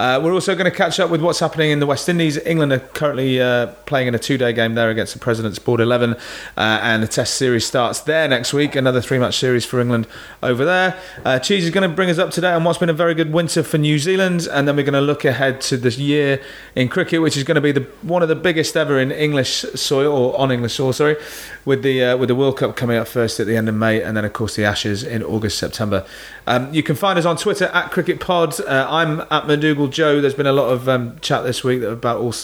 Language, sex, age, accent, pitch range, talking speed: English, male, 30-49, British, 120-155 Hz, 260 wpm